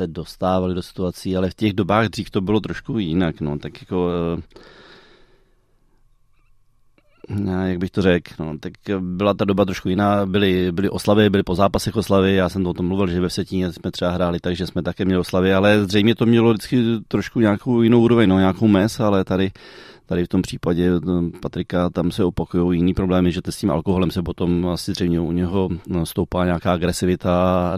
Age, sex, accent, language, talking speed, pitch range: 30-49, male, native, Czech, 190 wpm, 85-100 Hz